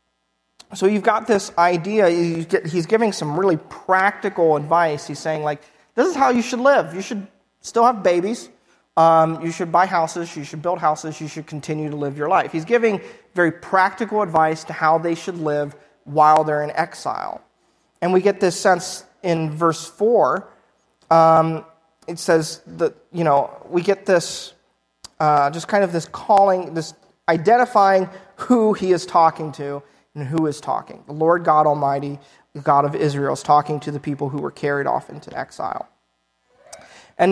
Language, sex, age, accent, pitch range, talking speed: English, male, 30-49, American, 150-185 Hz, 175 wpm